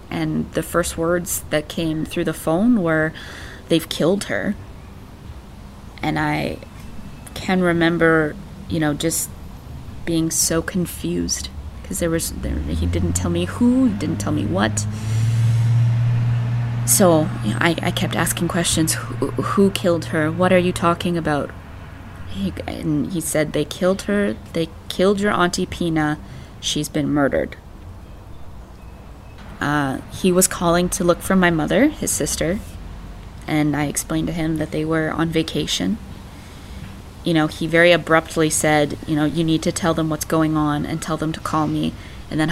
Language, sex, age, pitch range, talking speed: English, female, 20-39, 115-165 Hz, 155 wpm